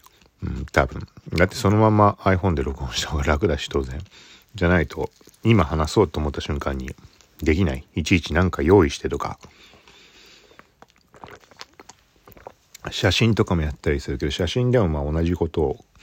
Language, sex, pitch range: Japanese, male, 75-105 Hz